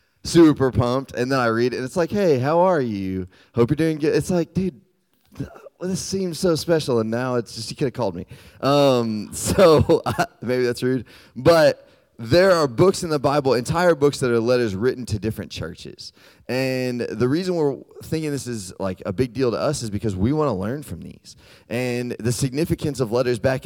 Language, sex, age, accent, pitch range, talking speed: English, male, 20-39, American, 110-145 Hz, 210 wpm